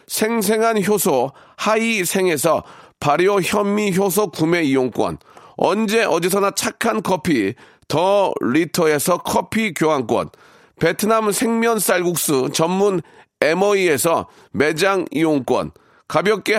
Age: 40-59